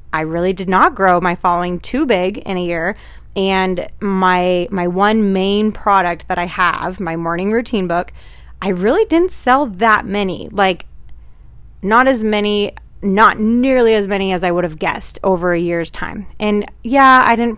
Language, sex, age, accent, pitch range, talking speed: English, female, 20-39, American, 185-235 Hz, 180 wpm